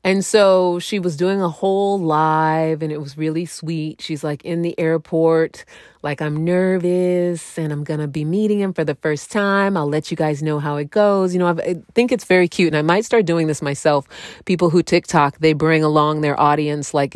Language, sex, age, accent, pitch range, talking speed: English, female, 30-49, American, 155-190 Hz, 225 wpm